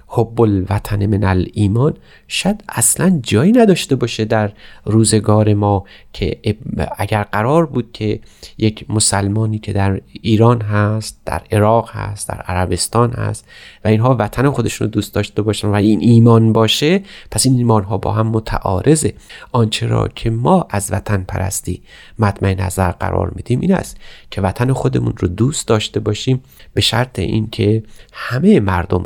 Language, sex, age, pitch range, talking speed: Persian, male, 30-49, 100-120 Hz, 150 wpm